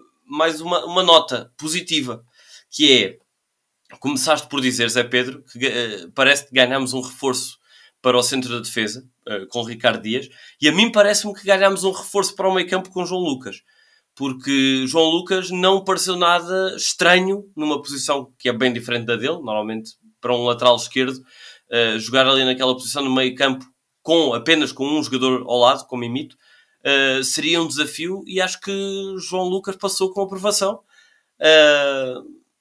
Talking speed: 170 wpm